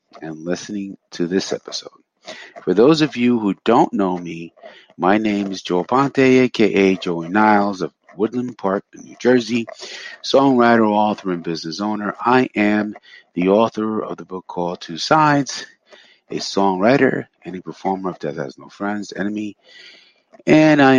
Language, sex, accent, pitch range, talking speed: English, male, American, 90-115 Hz, 155 wpm